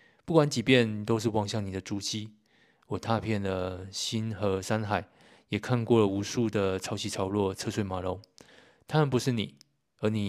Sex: male